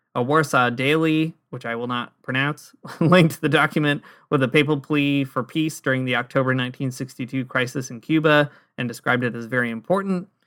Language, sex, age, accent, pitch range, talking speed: English, male, 30-49, American, 125-145 Hz, 170 wpm